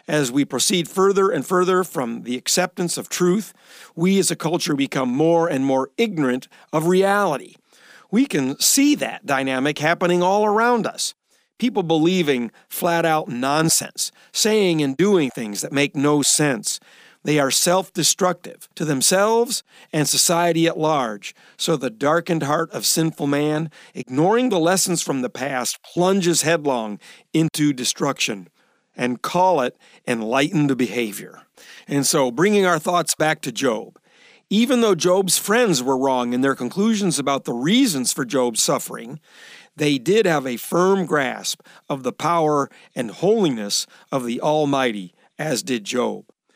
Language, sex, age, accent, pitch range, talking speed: English, male, 50-69, American, 140-185 Hz, 145 wpm